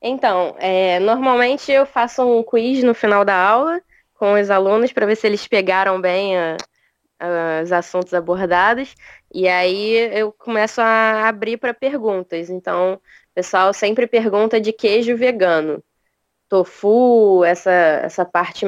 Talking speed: 135 wpm